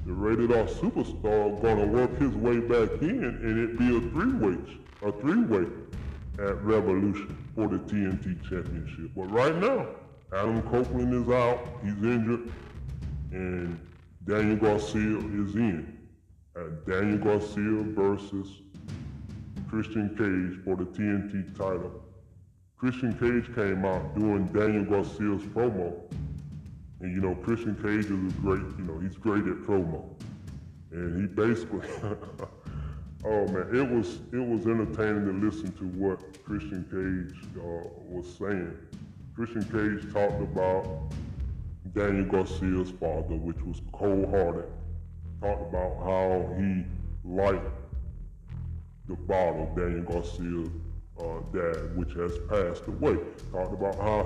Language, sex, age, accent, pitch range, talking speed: English, female, 20-39, American, 85-105 Hz, 125 wpm